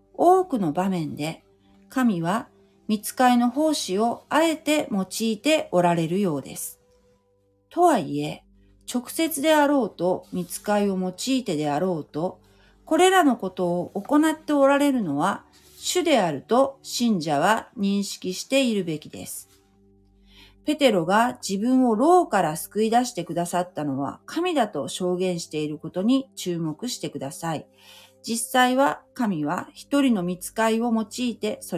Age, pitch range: 40-59, 145-245 Hz